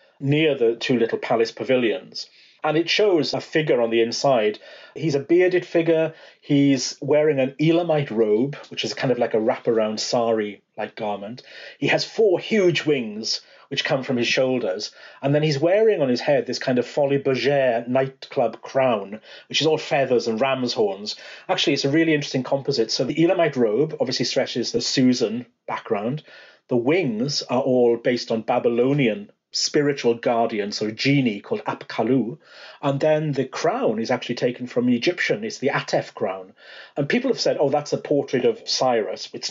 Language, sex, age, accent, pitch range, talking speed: English, male, 40-59, British, 120-160 Hz, 175 wpm